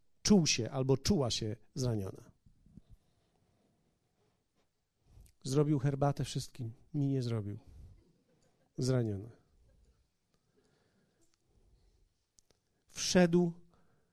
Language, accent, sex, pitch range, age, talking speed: Polish, native, male, 130-205 Hz, 40-59, 60 wpm